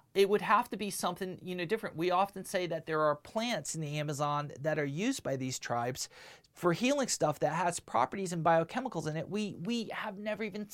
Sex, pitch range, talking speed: male, 145-195 Hz, 225 wpm